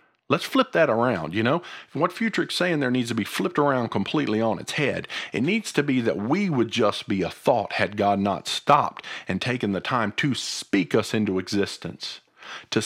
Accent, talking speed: American, 205 wpm